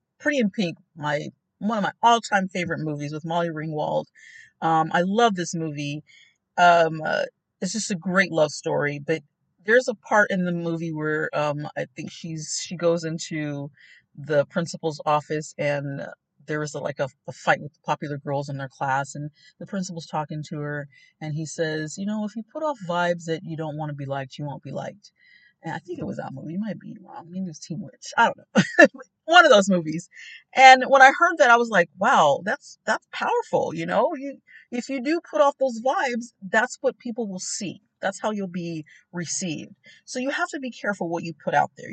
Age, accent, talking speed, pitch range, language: 40-59, American, 220 wpm, 160-235 Hz, English